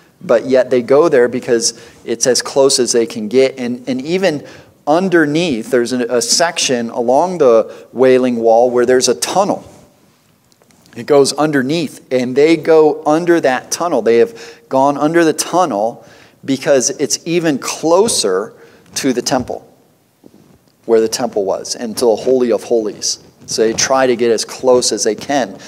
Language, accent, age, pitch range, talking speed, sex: English, American, 40-59, 125-165 Hz, 165 wpm, male